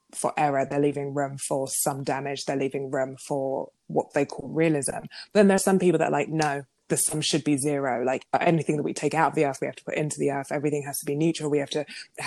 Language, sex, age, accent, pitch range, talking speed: English, female, 20-39, British, 145-165 Hz, 265 wpm